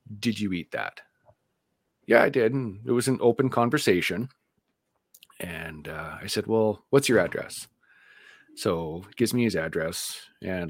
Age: 40-59